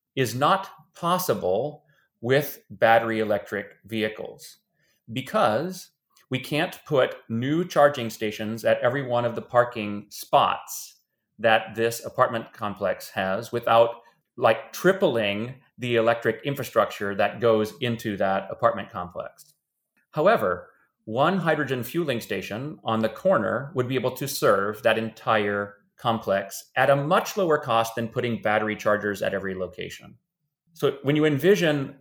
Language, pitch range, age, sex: English, 110-145 Hz, 30-49, male